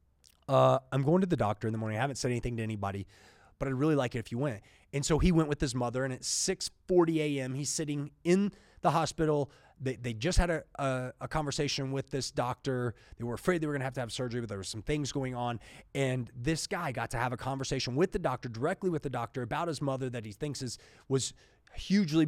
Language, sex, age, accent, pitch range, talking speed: English, male, 30-49, American, 115-160 Hz, 250 wpm